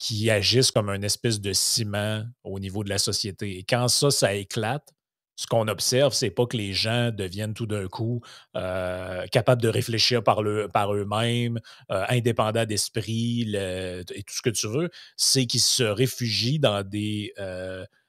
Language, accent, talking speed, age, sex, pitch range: French, Canadian, 180 wpm, 30-49, male, 100-120 Hz